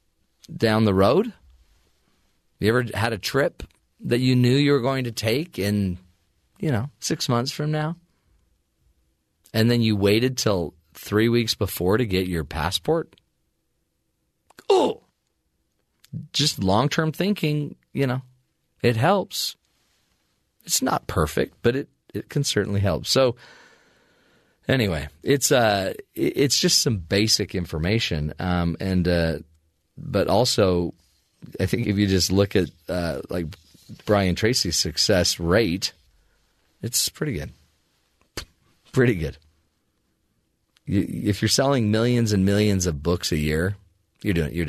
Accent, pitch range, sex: American, 85-125 Hz, male